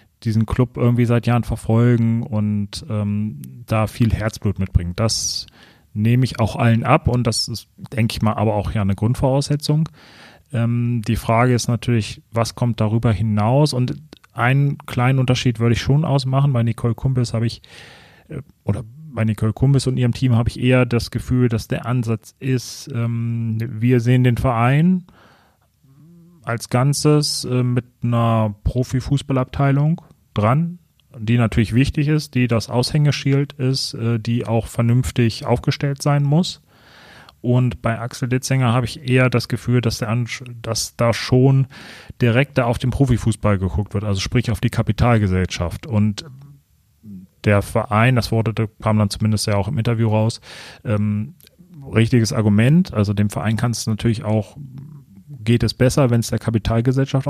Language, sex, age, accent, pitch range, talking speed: German, male, 30-49, German, 110-130 Hz, 155 wpm